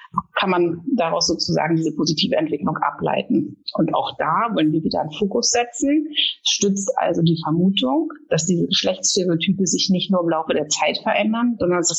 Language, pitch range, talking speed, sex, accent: German, 175-225 Hz, 175 wpm, female, German